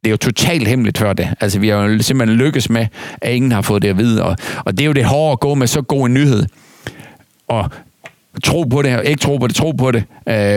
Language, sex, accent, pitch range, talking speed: Danish, male, native, 95-115 Hz, 275 wpm